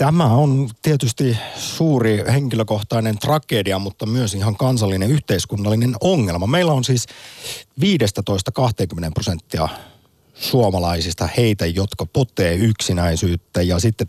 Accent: native